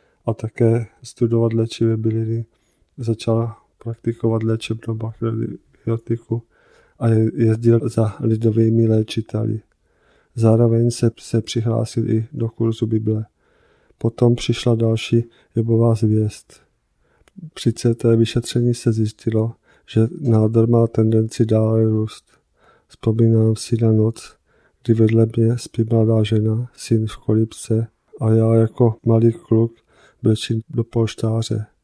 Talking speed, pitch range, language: 110 wpm, 110-115 Hz, Czech